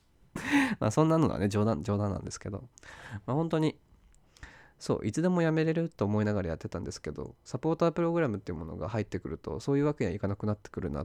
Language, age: Japanese, 20-39